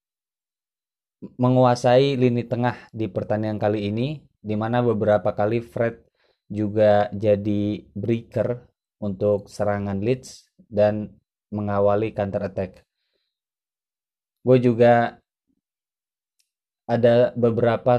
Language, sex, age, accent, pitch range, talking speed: Indonesian, male, 20-39, native, 105-120 Hz, 85 wpm